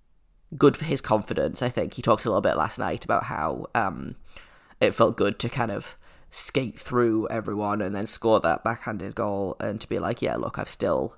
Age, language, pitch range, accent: 10-29, English, 105-120 Hz, British